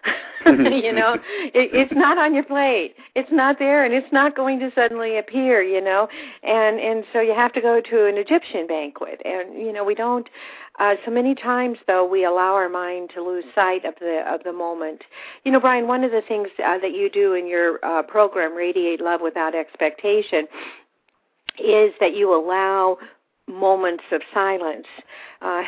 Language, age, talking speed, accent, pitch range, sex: English, 50-69, 185 wpm, American, 175-255 Hz, female